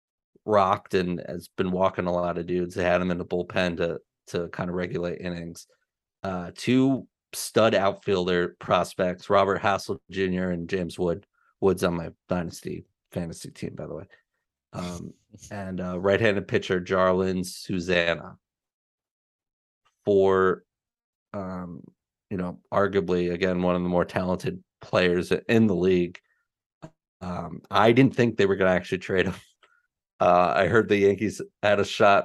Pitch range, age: 90-100 Hz, 30-49